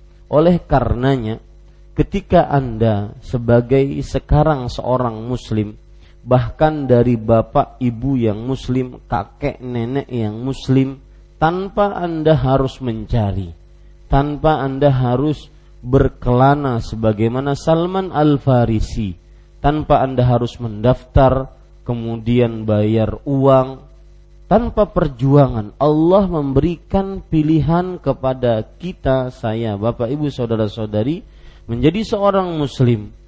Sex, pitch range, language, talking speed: male, 110-150 Hz, Malay, 90 wpm